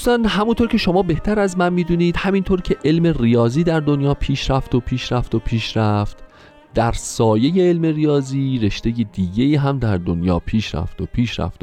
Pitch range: 95-140 Hz